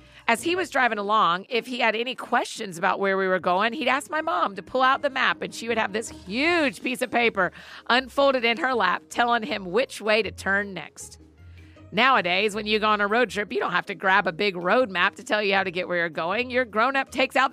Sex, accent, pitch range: female, American, 190-250 Hz